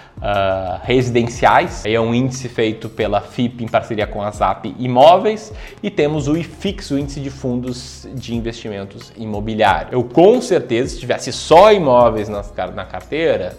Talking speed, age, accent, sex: 150 wpm, 20-39, Brazilian, male